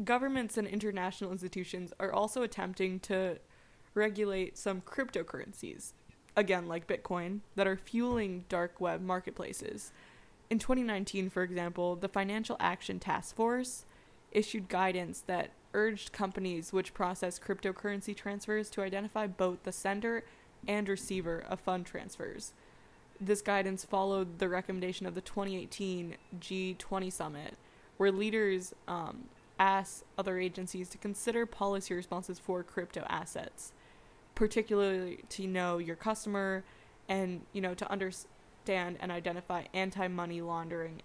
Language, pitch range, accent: English, 180-205 Hz, American